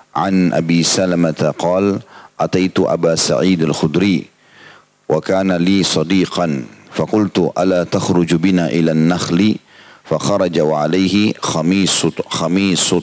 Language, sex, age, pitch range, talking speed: Indonesian, male, 40-59, 80-95 Hz, 75 wpm